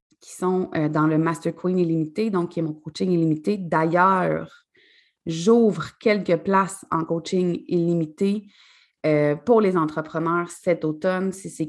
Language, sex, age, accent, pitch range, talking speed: French, female, 30-49, Canadian, 160-225 Hz, 140 wpm